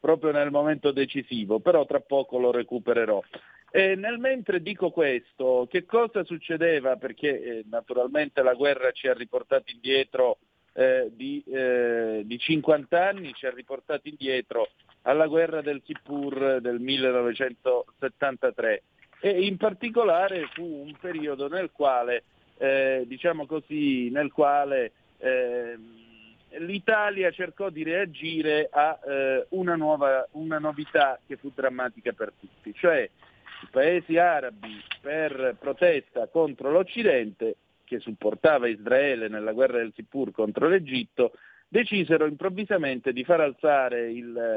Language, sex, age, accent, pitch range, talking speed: Italian, male, 40-59, native, 130-180 Hz, 125 wpm